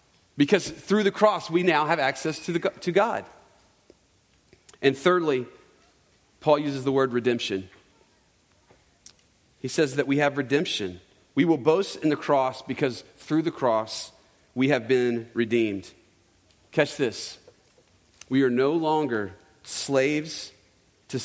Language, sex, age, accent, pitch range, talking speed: English, male, 40-59, American, 110-150 Hz, 130 wpm